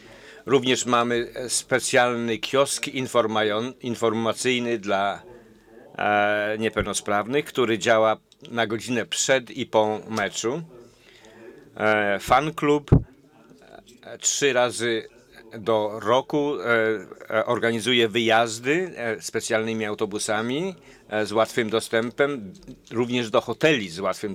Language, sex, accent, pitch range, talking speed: English, male, Polish, 110-125 Hz, 80 wpm